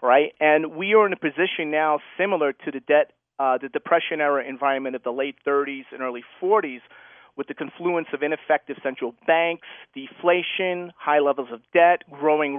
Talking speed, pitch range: 175 wpm, 135-165 Hz